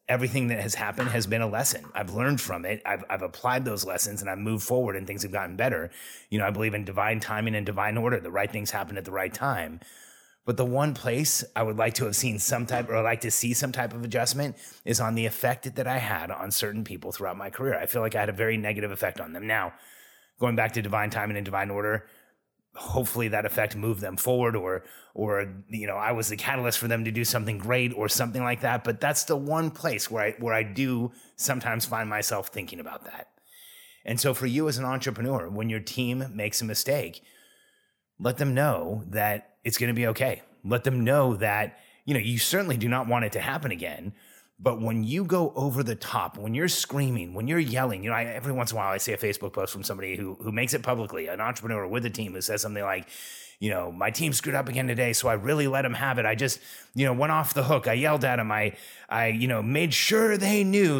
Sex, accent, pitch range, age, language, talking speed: male, American, 105-130 Hz, 30-49, English, 250 wpm